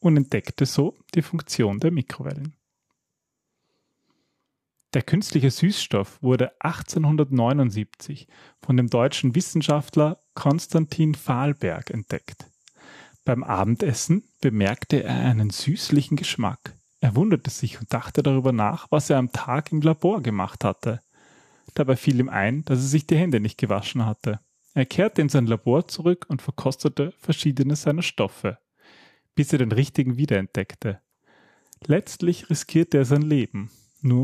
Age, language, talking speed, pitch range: 30-49, German, 130 wpm, 120-150 Hz